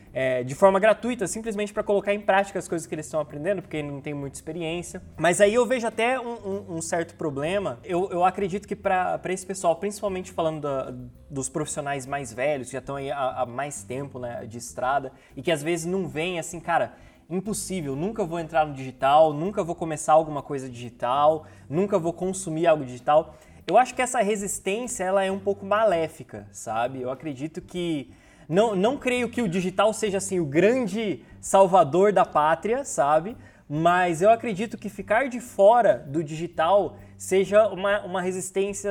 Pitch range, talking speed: 150-205 Hz, 185 wpm